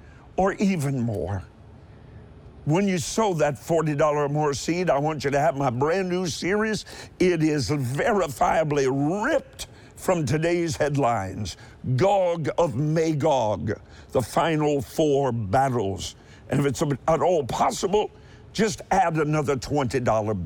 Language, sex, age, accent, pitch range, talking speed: English, male, 50-69, American, 120-170 Hz, 130 wpm